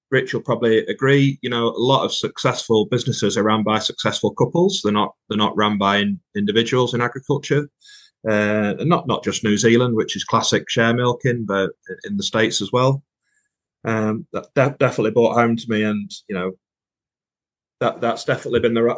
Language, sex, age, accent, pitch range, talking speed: English, male, 30-49, British, 110-130 Hz, 195 wpm